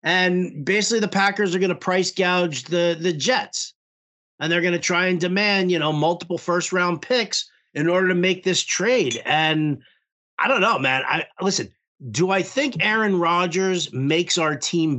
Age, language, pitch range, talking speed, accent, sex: 40-59, English, 150-195 Hz, 185 wpm, American, male